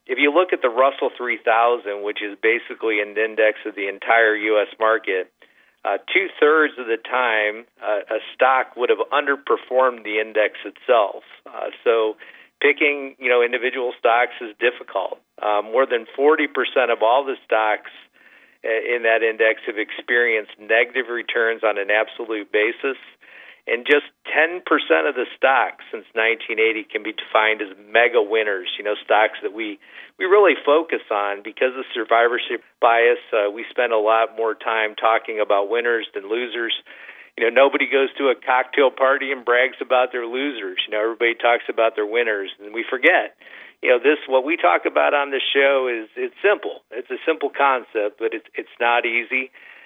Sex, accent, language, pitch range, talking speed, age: male, American, English, 110-145 Hz, 170 wpm, 50-69